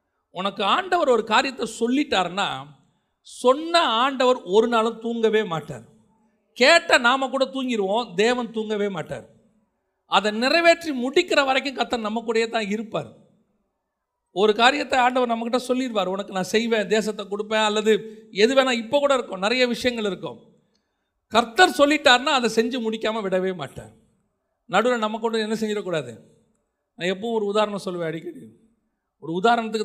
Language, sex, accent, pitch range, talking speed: Tamil, male, native, 205-250 Hz, 135 wpm